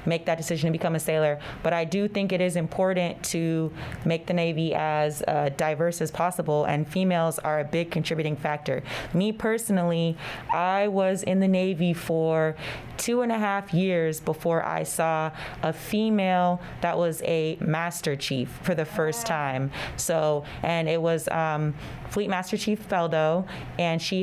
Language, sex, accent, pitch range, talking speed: English, female, American, 155-185 Hz, 170 wpm